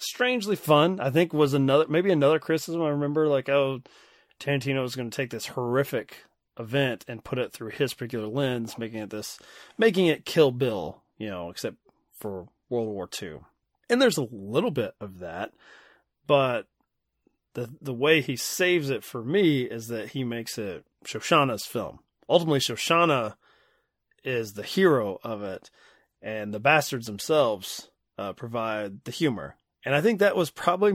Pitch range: 120-155 Hz